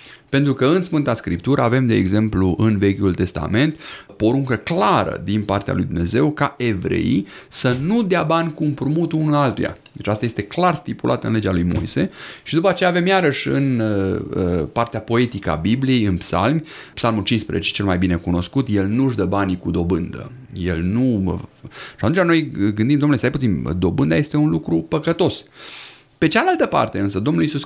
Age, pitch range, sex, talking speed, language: 30-49, 95-150 Hz, male, 175 wpm, Romanian